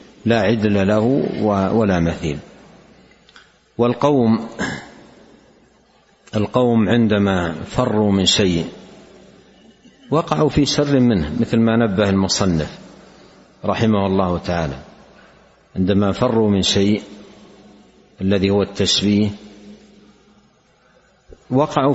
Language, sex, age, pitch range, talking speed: Arabic, male, 60-79, 95-120 Hz, 80 wpm